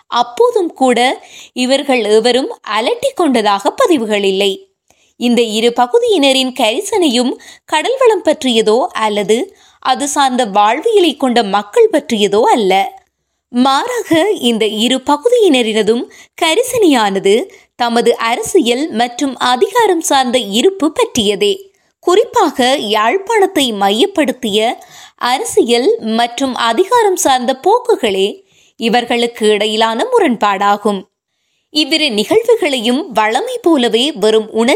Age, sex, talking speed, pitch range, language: 20-39, female, 70 wpm, 230-385 Hz, Tamil